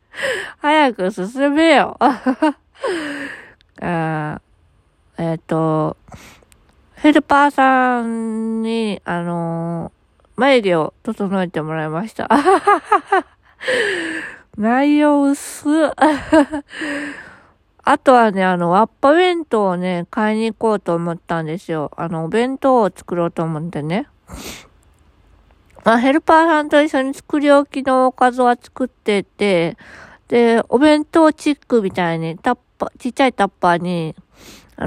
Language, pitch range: Japanese, 170-270 Hz